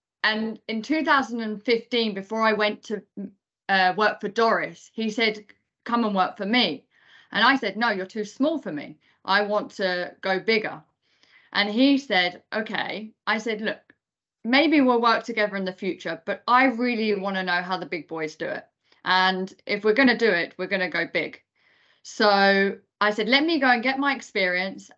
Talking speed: 190 wpm